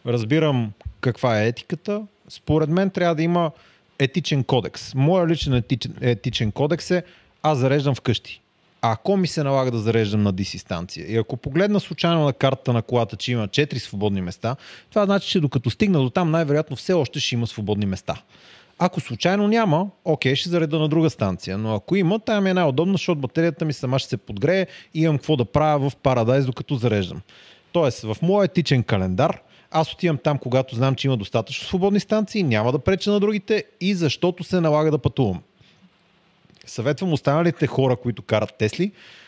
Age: 30-49